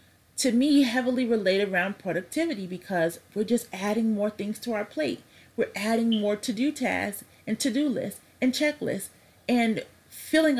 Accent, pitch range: American, 165-225 Hz